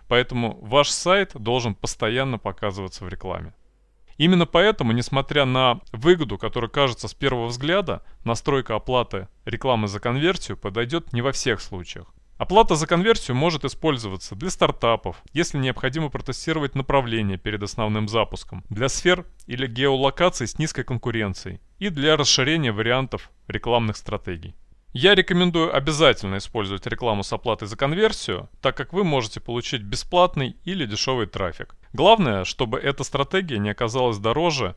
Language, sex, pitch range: Russian, male, 105-145 Hz